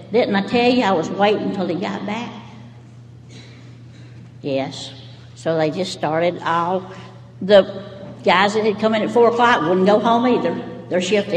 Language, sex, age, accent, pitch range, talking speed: English, female, 60-79, American, 135-195 Hz, 170 wpm